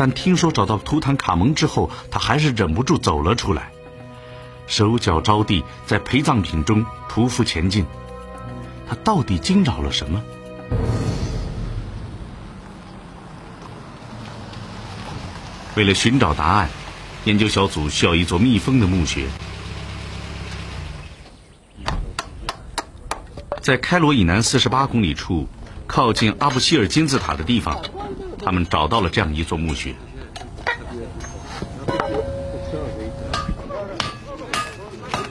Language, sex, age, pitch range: Chinese, male, 50-69, 85-125 Hz